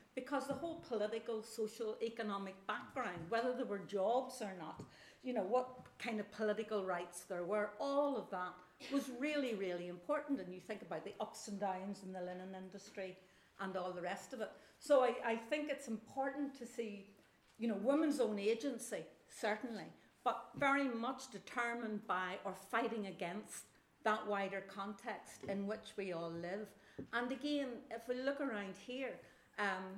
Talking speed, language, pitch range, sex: 170 wpm, English, 190-250 Hz, female